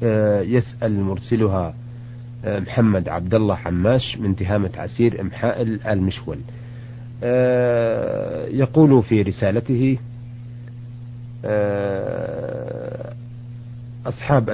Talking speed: 60 wpm